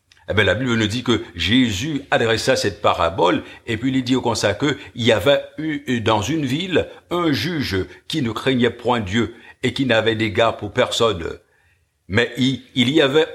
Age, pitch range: 60-79, 100-130 Hz